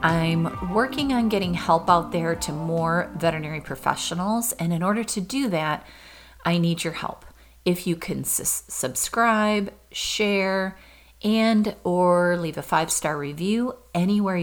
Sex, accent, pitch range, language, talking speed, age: female, American, 165-200 Hz, English, 135 wpm, 30-49